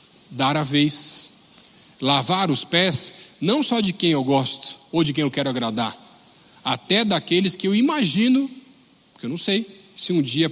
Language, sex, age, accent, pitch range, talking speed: Portuguese, male, 40-59, Brazilian, 155-200 Hz, 170 wpm